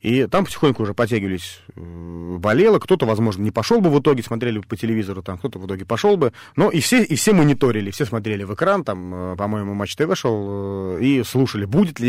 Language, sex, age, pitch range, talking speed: Russian, male, 30-49, 105-135 Hz, 210 wpm